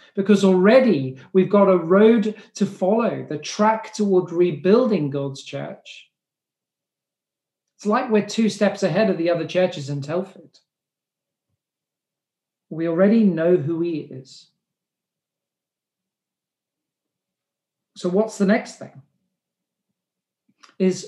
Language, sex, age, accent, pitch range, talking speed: English, male, 40-59, British, 160-205 Hz, 110 wpm